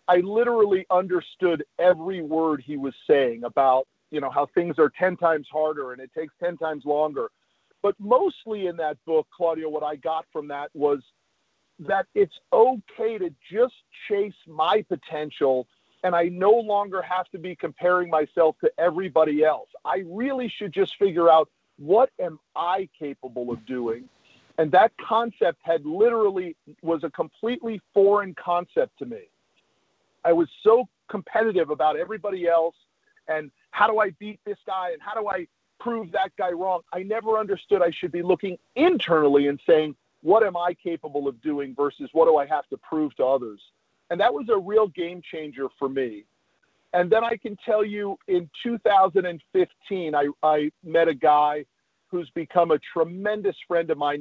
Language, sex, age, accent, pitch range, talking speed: English, male, 50-69, American, 150-205 Hz, 170 wpm